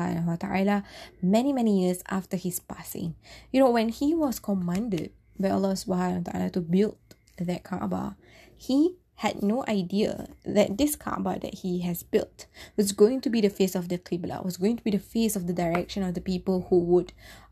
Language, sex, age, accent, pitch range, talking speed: English, female, 20-39, Malaysian, 180-220 Hz, 190 wpm